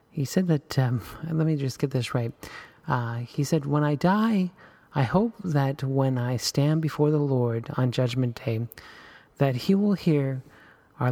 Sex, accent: male, American